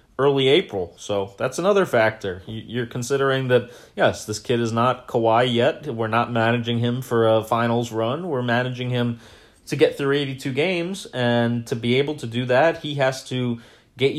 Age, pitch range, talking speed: 30-49, 115-130 Hz, 185 wpm